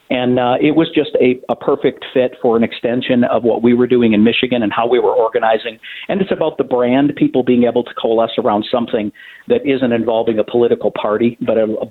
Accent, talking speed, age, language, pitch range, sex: American, 230 wpm, 50-69, English, 115-135 Hz, male